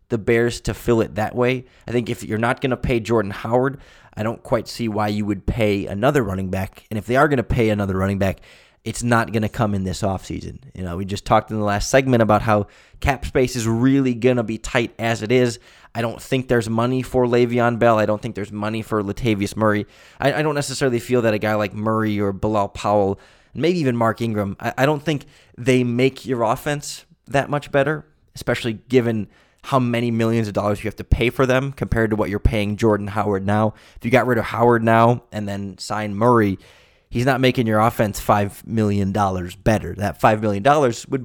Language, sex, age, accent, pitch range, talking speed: English, male, 20-39, American, 105-125 Hz, 225 wpm